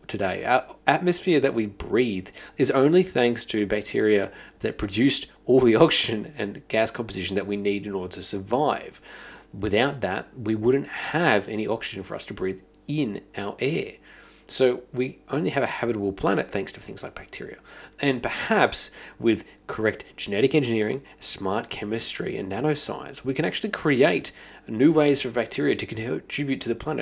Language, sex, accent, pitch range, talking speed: English, male, Australian, 100-135 Hz, 165 wpm